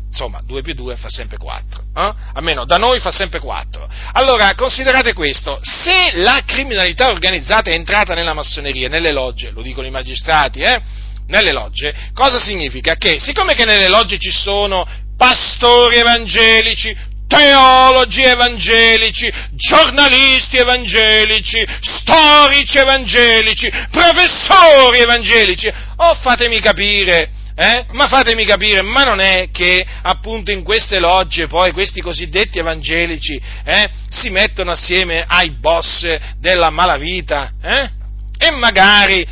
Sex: male